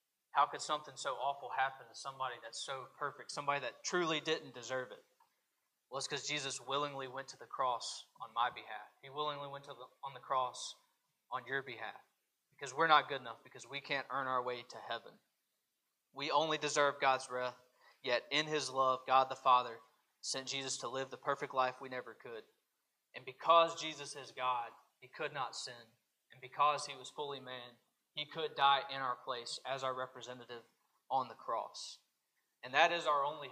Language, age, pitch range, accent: English, 20-39, 130-150 Hz, American